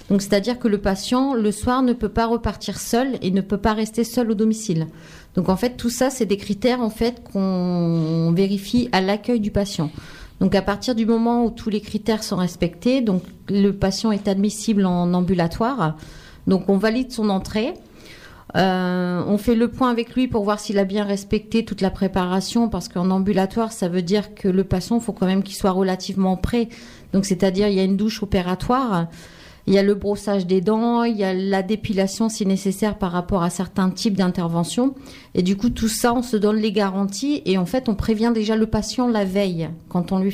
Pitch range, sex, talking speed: 190-230 Hz, female, 215 wpm